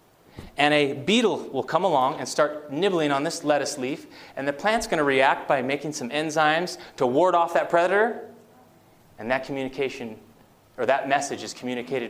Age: 30-49